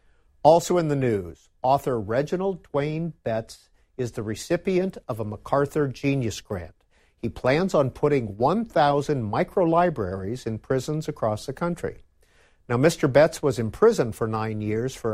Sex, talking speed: male, 145 wpm